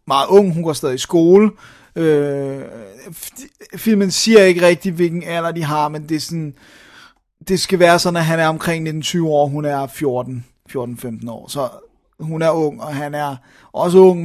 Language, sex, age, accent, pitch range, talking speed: Danish, male, 30-49, native, 145-180 Hz, 185 wpm